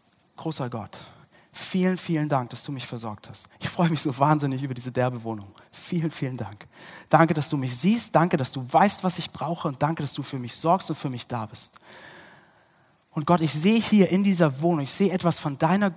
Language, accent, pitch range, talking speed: German, German, 135-180 Hz, 220 wpm